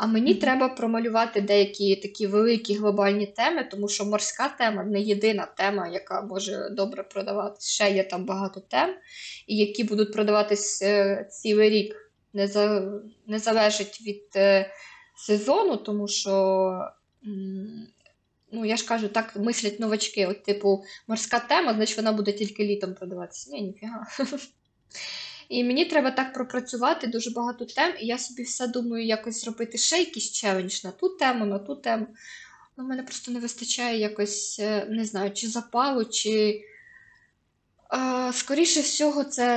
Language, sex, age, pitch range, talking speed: Ukrainian, female, 20-39, 205-245 Hz, 145 wpm